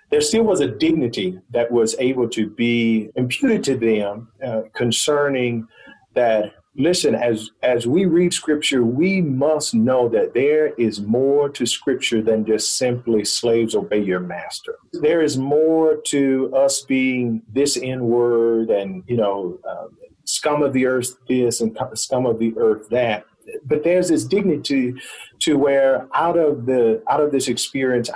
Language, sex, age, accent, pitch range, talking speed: English, male, 40-59, American, 115-150 Hz, 160 wpm